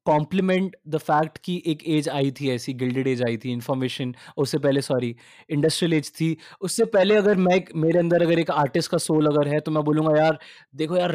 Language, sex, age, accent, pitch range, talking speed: Hindi, male, 20-39, native, 150-195 Hz, 90 wpm